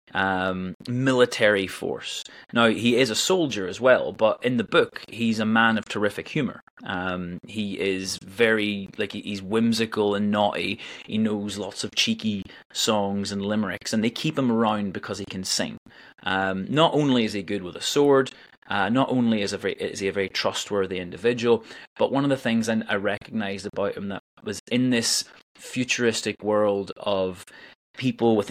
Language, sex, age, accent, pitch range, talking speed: English, male, 30-49, British, 100-120 Hz, 180 wpm